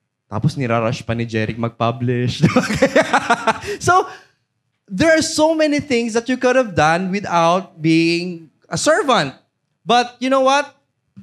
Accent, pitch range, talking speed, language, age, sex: Filipino, 135-185 Hz, 110 wpm, English, 20-39, male